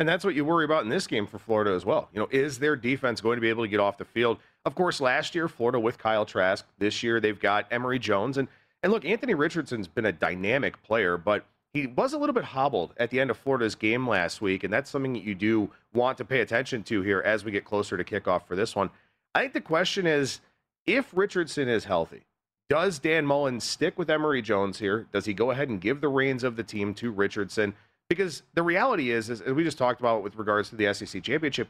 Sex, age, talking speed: male, 40-59, 250 wpm